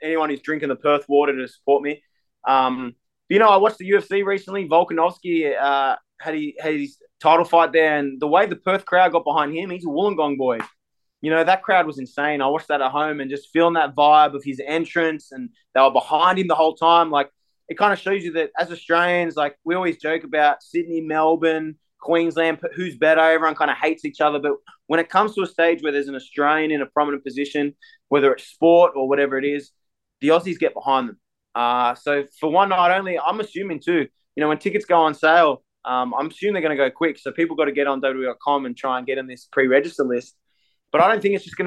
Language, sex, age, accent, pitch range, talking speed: English, male, 20-39, Australian, 140-170 Hz, 235 wpm